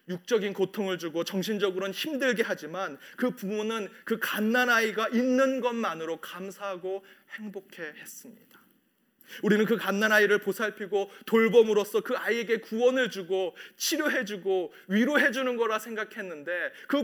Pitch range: 160-220 Hz